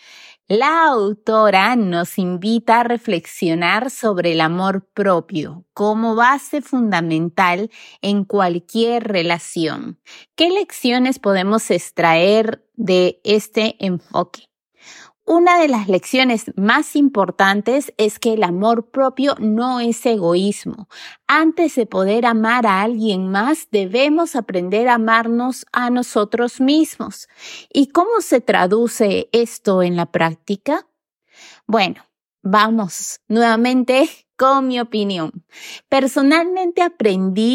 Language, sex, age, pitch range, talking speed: Spanish, female, 30-49, 195-260 Hz, 105 wpm